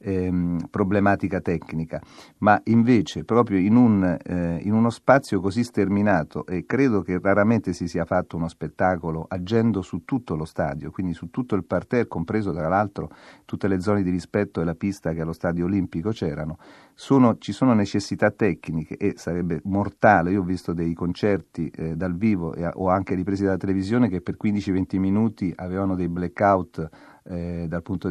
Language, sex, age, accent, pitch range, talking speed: Italian, male, 40-59, native, 85-105 Hz, 170 wpm